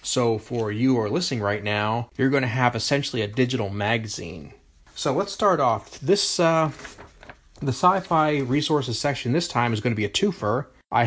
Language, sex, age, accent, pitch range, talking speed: English, male, 30-49, American, 110-130 Hz, 190 wpm